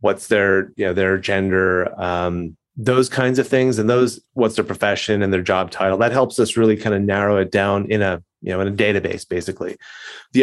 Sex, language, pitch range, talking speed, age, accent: male, English, 100-120 Hz, 220 wpm, 30-49, American